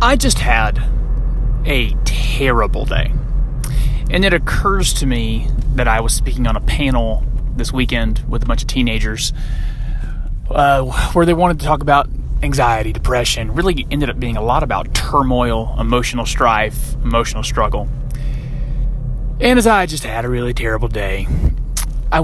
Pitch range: 115-145 Hz